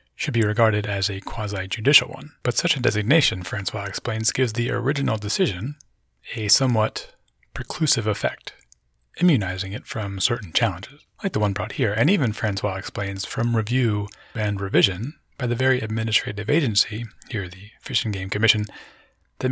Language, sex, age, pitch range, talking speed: English, male, 30-49, 100-120 Hz, 160 wpm